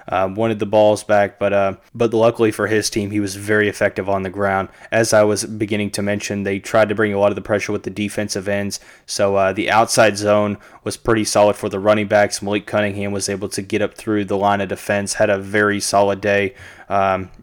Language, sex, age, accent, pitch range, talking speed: English, male, 20-39, American, 100-110 Hz, 235 wpm